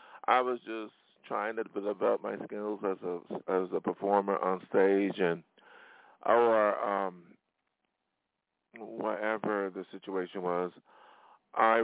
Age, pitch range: 40-59, 95-110 Hz